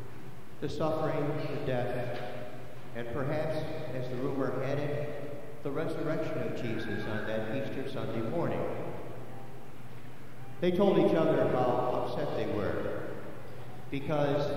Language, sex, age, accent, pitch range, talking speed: English, male, 50-69, American, 125-155 Hz, 115 wpm